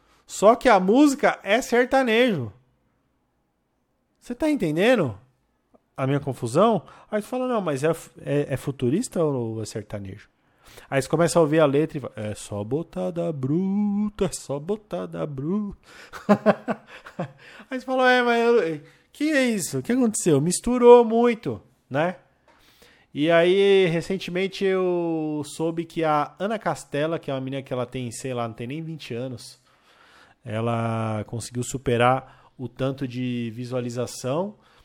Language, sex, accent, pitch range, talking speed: Portuguese, male, Brazilian, 125-190 Hz, 150 wpm